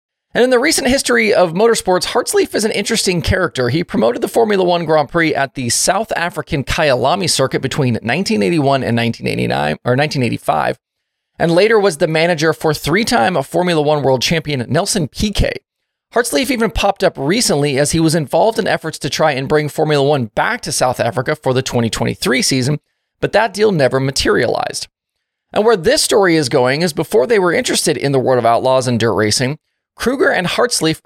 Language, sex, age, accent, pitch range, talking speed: English, male, 30-49, American, 135-195 Hz, 185 wpm